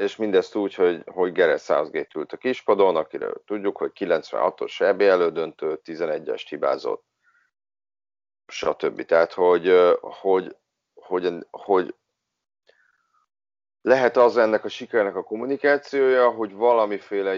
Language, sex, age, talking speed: Hungarian, male, 30-49, 110 wpm